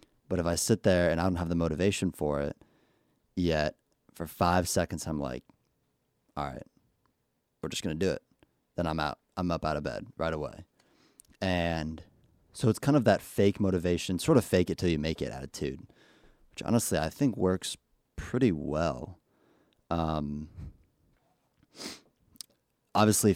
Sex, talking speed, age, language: male, 160 wpm, 30-49, English